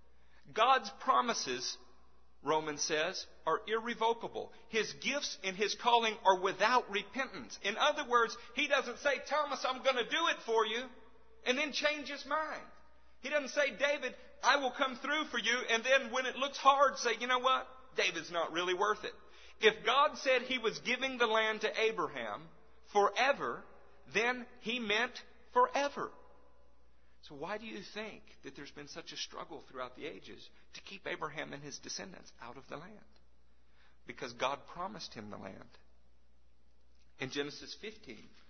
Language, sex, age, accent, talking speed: English, male, 50-69, American, 165 wpm